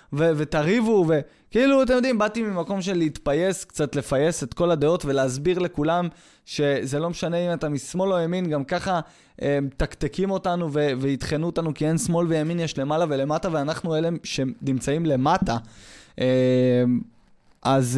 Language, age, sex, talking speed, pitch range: Hebrew, 20-39, male, 145 wpm, 135-200 Hz